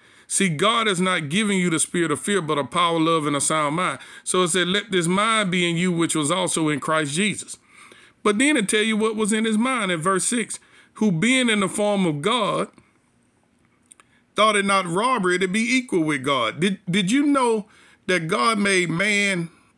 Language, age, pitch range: English, 50-69, 165-210 Hz